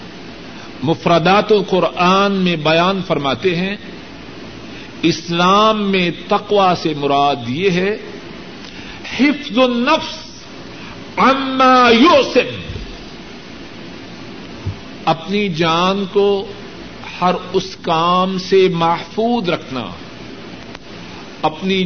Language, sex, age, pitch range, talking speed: Urdu, male, 50-69, 165-225 Hz, 70 wpm